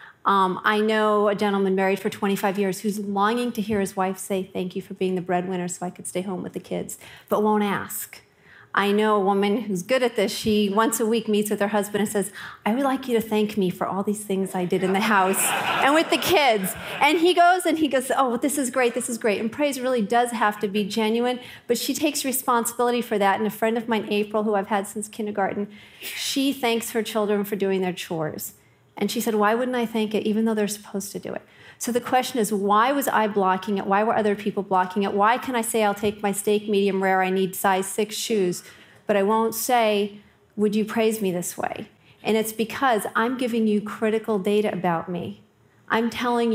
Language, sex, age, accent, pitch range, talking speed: English, female, 40-59, American, 195-225 Hz, 235 wpm